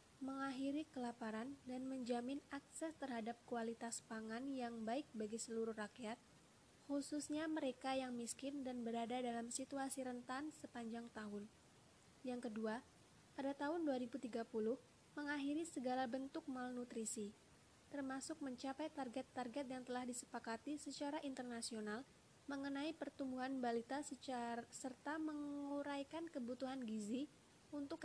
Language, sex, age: Indonesian, female, 20-39